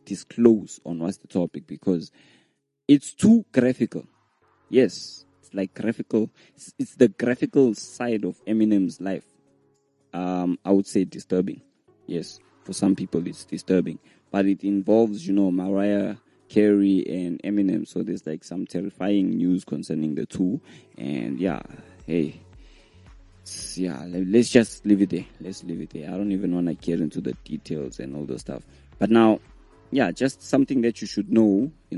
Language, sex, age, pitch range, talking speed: English, male, 20-39, 90-105 Hz, 165 wpm